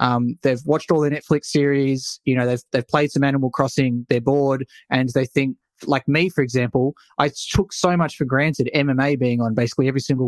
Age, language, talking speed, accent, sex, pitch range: 20-39, English, 210 wpm, Australian, male, 125-150 Hz